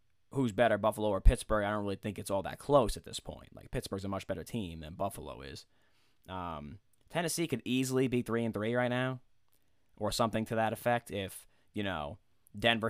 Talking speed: 205 wpm